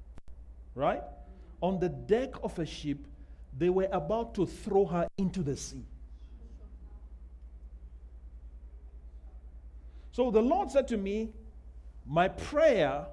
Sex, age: male, 50-69